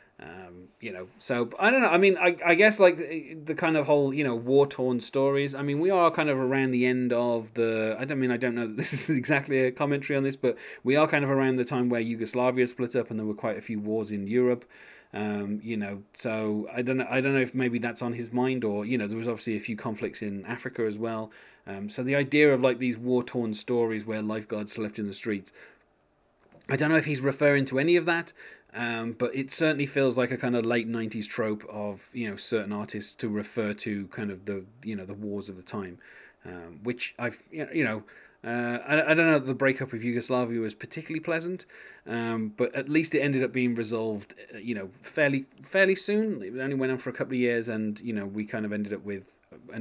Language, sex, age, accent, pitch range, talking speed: English, male, 30-49, British, 110-135 Hz, 245 wpm